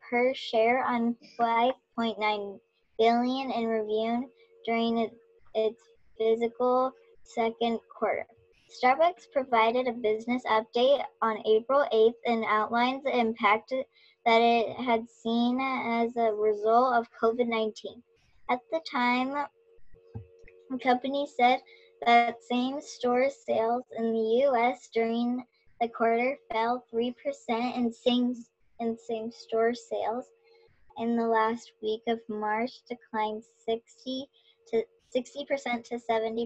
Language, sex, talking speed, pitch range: English, male, 115 wpm, 225-255 Hz